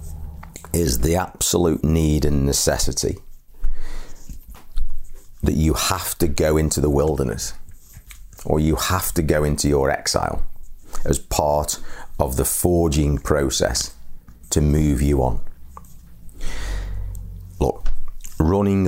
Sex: male